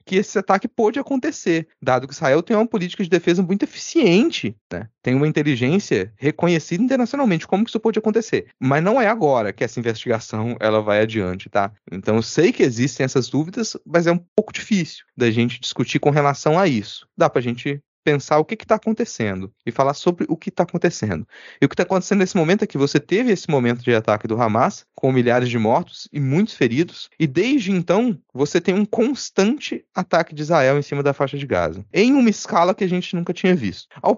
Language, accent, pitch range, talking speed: Portuguese, Brazilian, 125-195 Hz, 215 wpm